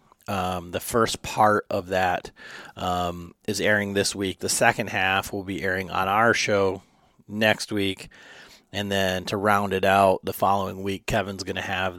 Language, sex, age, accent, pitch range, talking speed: English, male, 30-49, American, 95-105 Hz, 170 wpm